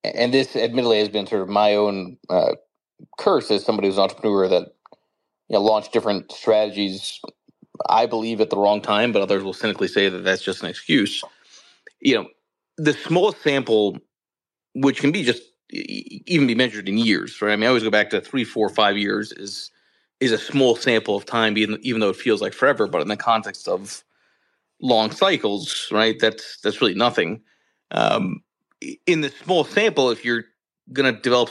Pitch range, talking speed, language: 105-125 Hz, 190 wpm, English